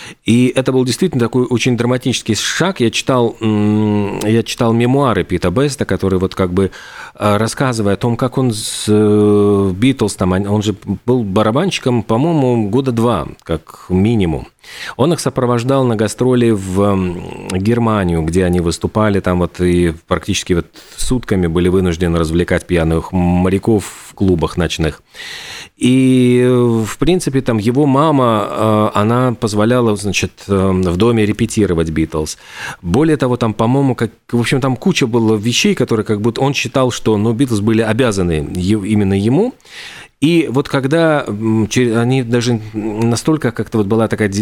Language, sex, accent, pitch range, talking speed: Russian, male, native, 95-125 Hz, 140 wpm